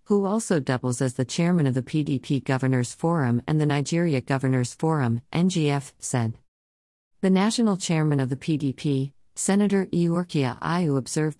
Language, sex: English, female